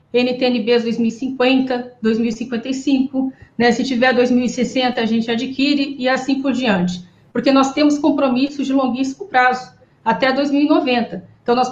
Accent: Brazilian